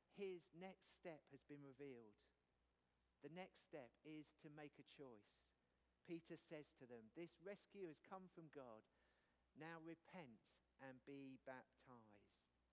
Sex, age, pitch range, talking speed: male, 50-69, 125-155 Hz, 135 wpm